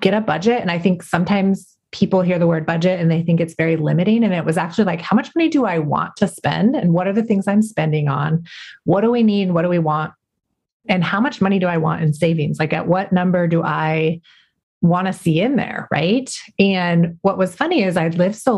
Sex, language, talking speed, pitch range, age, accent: female, English, 245 wpm, 160-195 Hz, 30-49, American